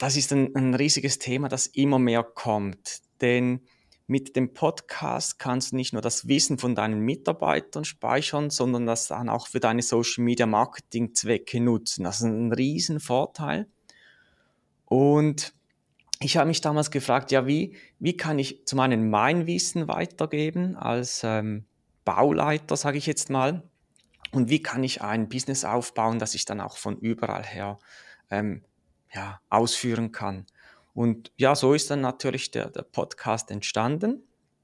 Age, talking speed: 30-49, 150 wpm